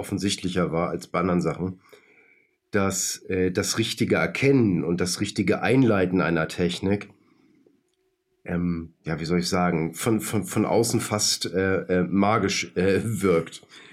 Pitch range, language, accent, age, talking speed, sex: 90-110 Hz, German, German, 40-59, 140 wpm, male